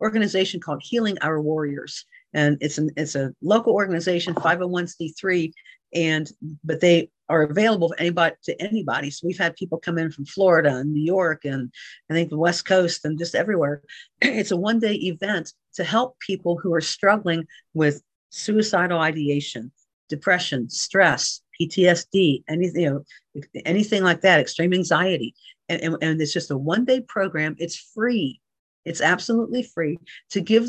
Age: 50-69